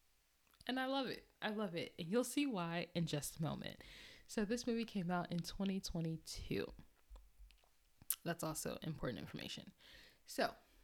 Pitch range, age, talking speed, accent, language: 160-205 Hz, 10-29, 150 wpm, American, English